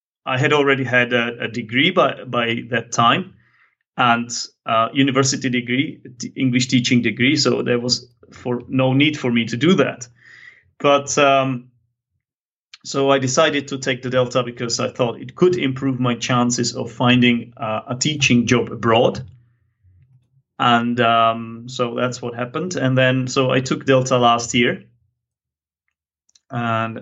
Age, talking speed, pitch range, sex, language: 30-49, 155 wpm, 120-130 Hz, male, English